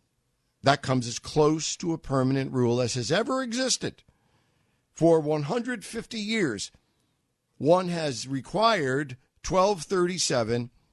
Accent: American